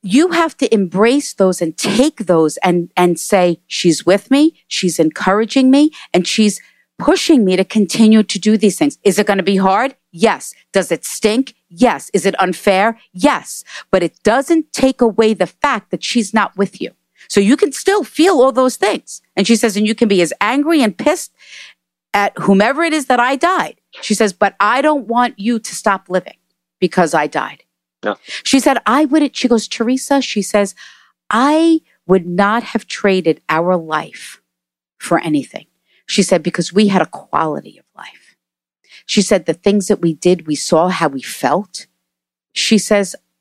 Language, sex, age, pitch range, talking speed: English, female, 50-69, 180-250 Hz, 185 wpm